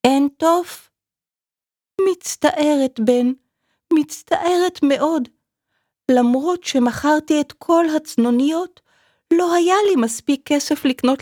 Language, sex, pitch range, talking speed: Hebrew, female, 160-270 Hz, 90 wpm